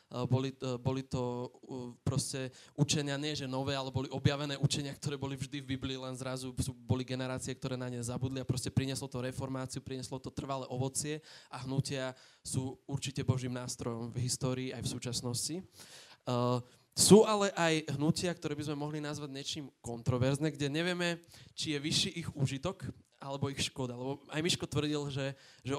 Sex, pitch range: male, 130-160 Hz